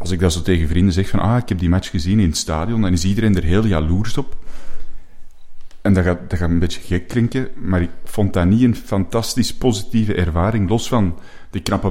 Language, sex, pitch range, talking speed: Dutch, male, 90-110 Hz, 230 wpm